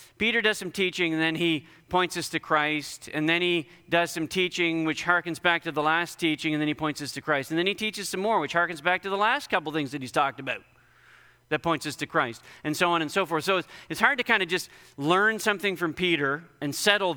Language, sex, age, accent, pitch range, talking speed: English, male, 40-59, American, 140-170 Hz, 260 wpm